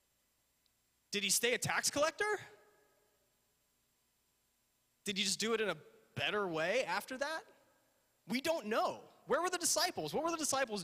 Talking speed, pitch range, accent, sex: 155 wpm, 150-235 Hz, American, male